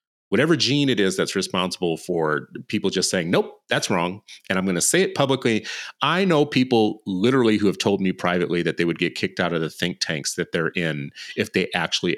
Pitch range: 90-135 Hz